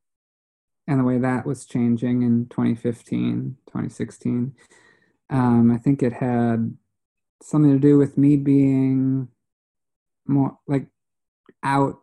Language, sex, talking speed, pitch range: English, male, 115 wpm, 120-140 Hz